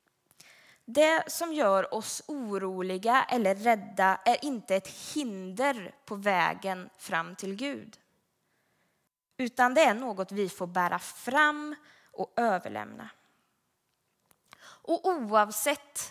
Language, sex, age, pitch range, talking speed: Swedish, female, 20-39, 185-235 Hz, 100 wpm